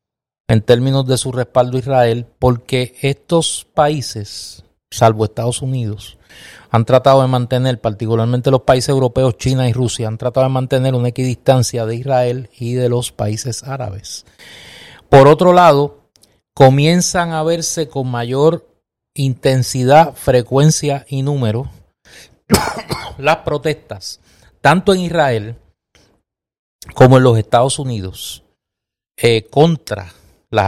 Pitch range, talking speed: 115-140 Hz, 120 wpm